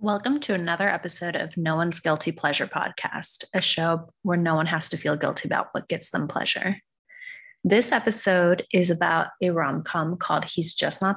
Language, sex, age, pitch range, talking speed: English, female, 20-39, 170-200 Hz, 185 wpm